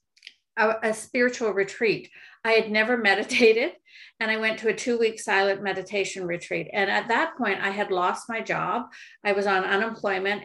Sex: female